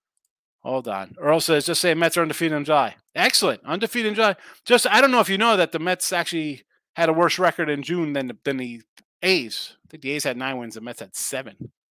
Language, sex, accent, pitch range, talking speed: English, male, American, 145-210 Hz, 230 wpm